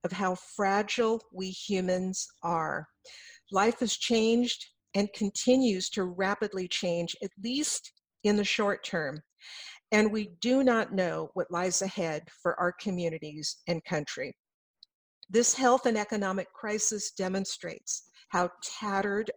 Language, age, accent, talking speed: English, 50-69, American, 125 wpm